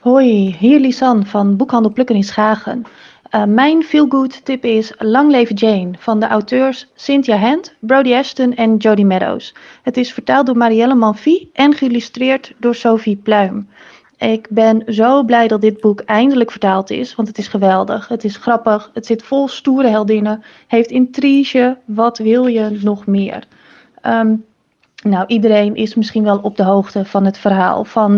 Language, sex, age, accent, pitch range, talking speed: Dutch, female, 30-49, Dutch, 210-255 Hz, 165 wpm